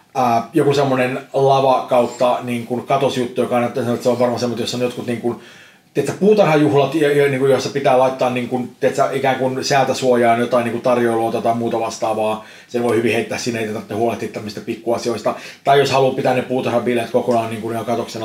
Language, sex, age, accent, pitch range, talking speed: Finnish, male, 30-49, native, 115-135 Hz, 185 wpm